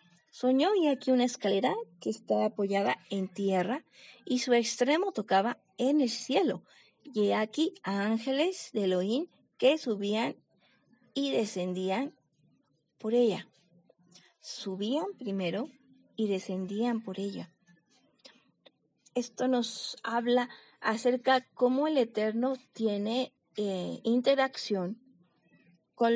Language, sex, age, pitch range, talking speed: Spanish, female, 30-49, 195-255 Hz, 105 wpm